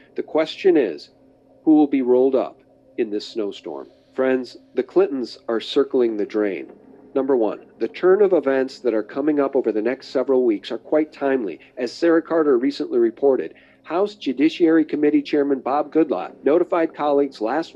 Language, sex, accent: English, male, American